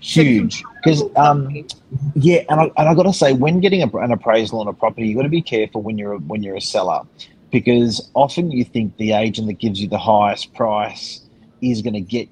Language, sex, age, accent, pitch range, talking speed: English, male, 30-49, Australian, 105-125 Hz, 225 wpm